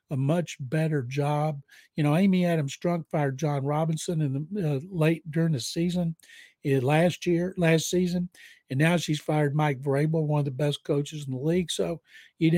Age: 60-79